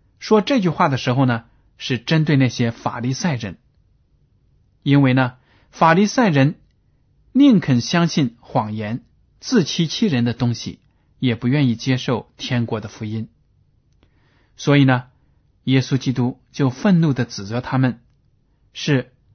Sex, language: male, Chinese